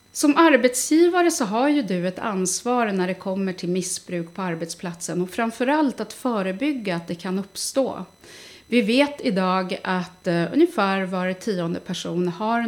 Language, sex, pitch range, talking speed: Swedish, female, 175-230 Hz, 155 wpm